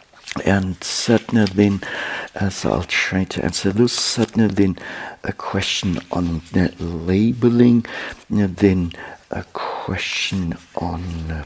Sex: male